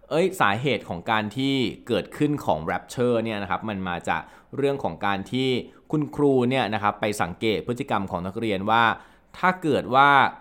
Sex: male